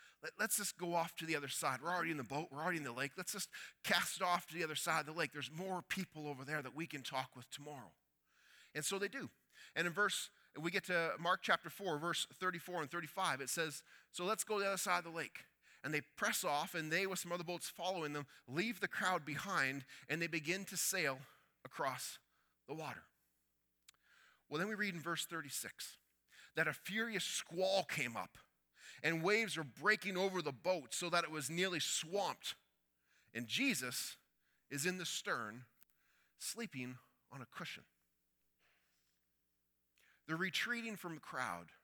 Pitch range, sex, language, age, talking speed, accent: 130-180 Hz, male, English, 30-49, 190 wpm, American